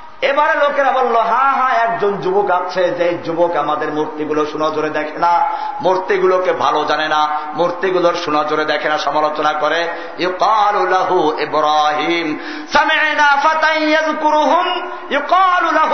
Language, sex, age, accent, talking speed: Bengali, male, 50-69, native, 85 wpm